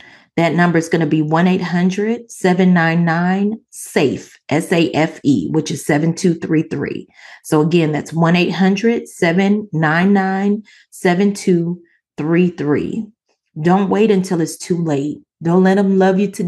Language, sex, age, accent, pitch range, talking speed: English, female, 30-49, American, 155-185 Hz, 100 wpm